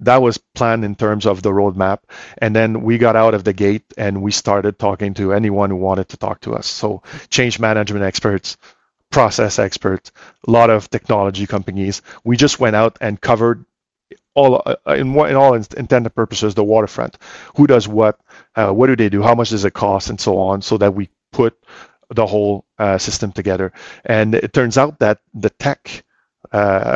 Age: 40-59